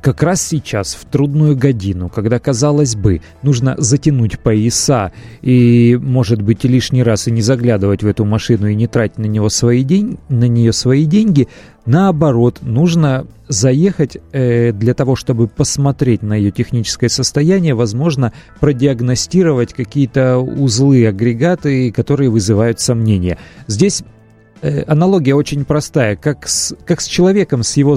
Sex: male